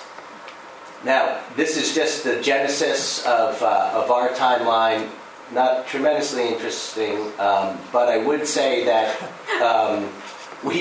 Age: 40-59